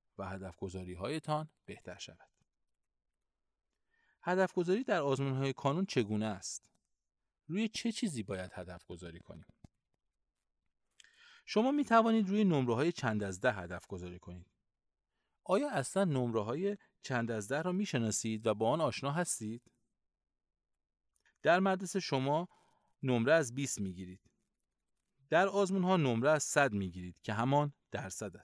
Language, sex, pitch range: Persian, male, 100-165 Hz